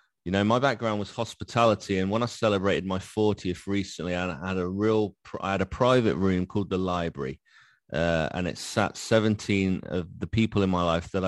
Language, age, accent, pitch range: English, 30-49, British, 95-115 Hz